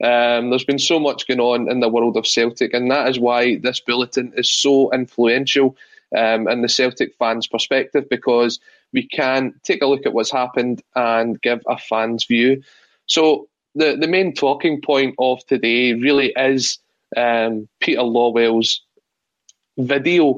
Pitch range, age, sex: 120-140 Hz, 20-39, male